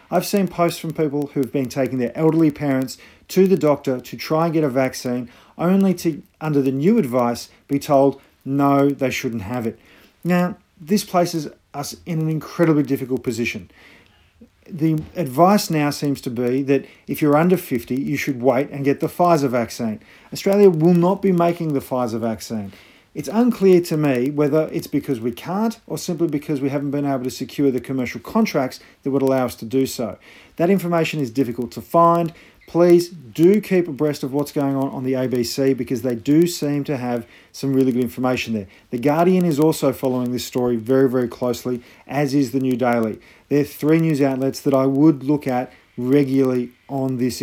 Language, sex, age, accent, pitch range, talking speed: English, male, 40-59, Australian, 125-165 Hz, 195 wpm